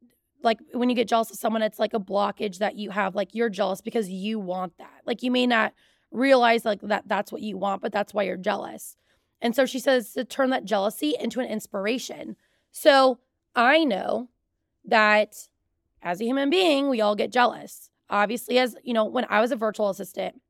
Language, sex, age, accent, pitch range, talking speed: English, female, 20-39, American, 200-250 Hz, 205 wpm